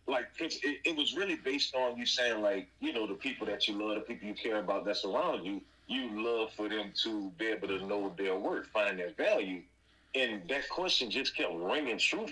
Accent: American